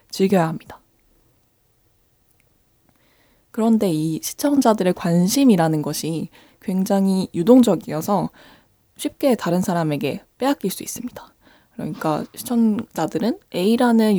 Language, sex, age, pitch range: Korean, female, 20-39, 170-220 Hz